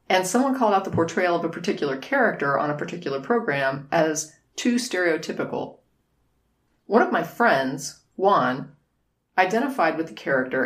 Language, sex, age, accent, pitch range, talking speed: English, female, 40-59, American, 150-225 Hz, 145 wpm